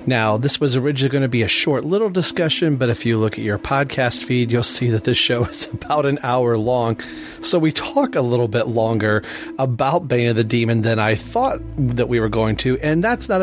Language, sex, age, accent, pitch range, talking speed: English, male, 40-59, American, 110-135 Hz, 230 wpm